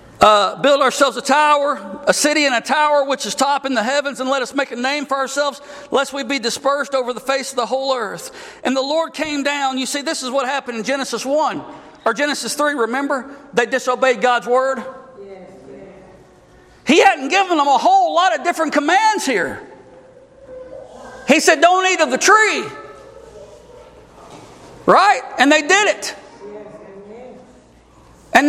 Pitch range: 230-300 Hz